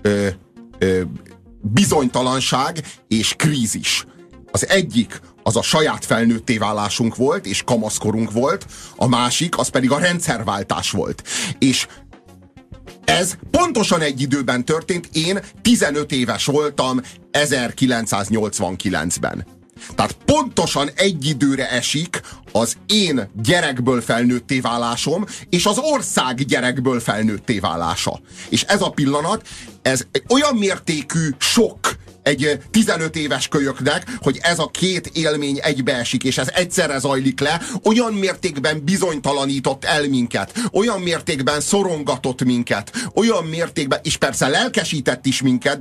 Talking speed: 115 wpm